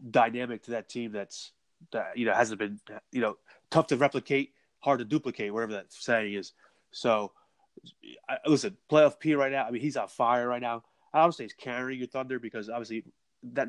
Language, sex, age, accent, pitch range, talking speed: English, male, 30-49, American, 115-135 Hz, 210 wpm